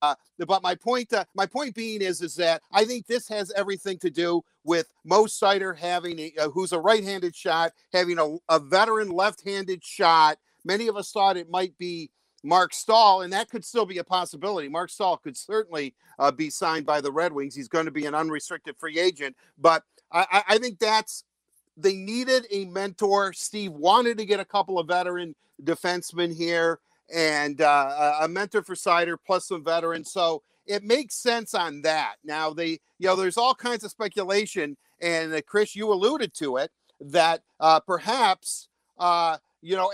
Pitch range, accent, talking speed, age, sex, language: 165-205 Hz, American, 190 wpm, 50-69, male, English